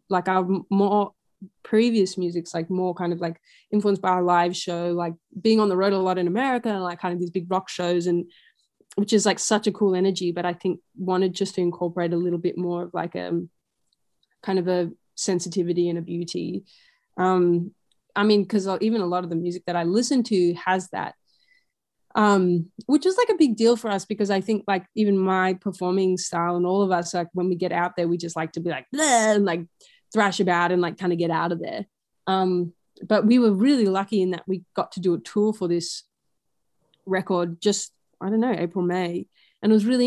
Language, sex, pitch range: English, female, 175-205 Hz